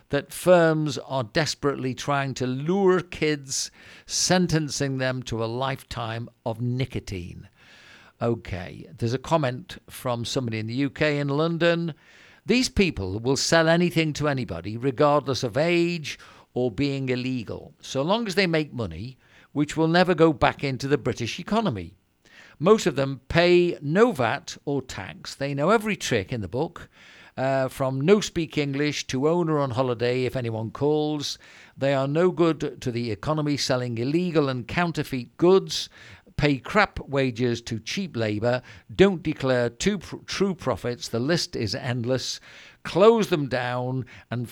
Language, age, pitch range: English, 50-69, 120-160 Hz